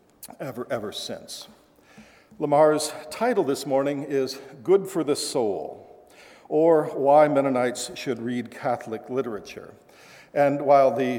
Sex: male